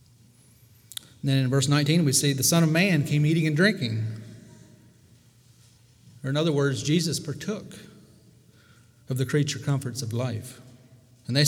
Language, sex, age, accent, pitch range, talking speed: English, male, 40-59, American, 120-145 Hz, 145 wpm